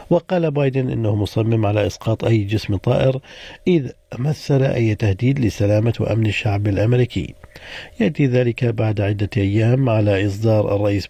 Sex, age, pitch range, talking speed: male, 50-69, 105-135 Hz, 135 wpm